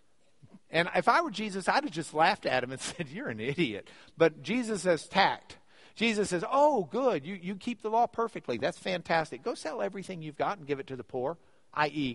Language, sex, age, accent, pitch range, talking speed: English, male, 50-69, American, 155-245 Hz, 215 wpm